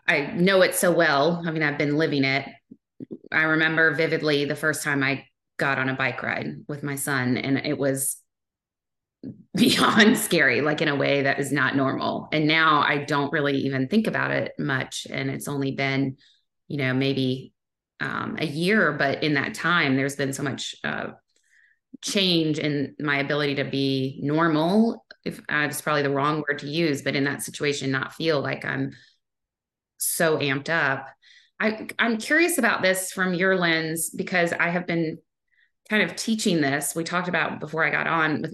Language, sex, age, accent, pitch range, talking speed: English, female, 20-39, American, 140-175 Hz, 185 wpm